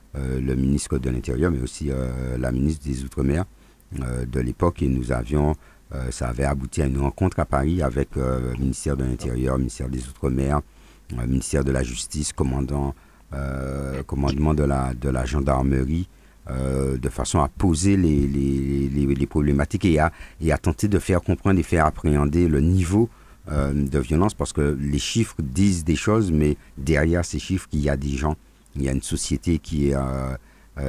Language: French